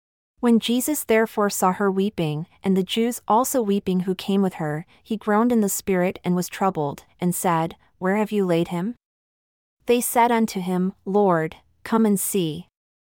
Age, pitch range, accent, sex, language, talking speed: 30-49, 175-215 Hz, American, female, English, 175 wpm